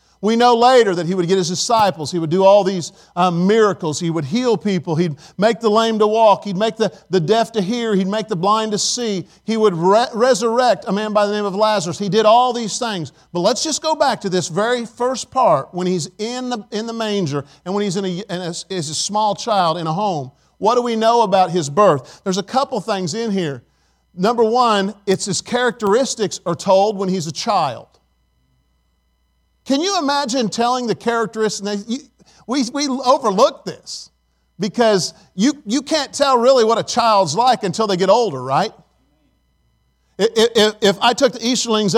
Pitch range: 180-240 Hz